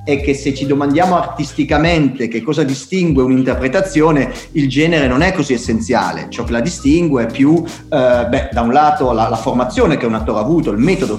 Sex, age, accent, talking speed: male, 40-59, native, 200 wpm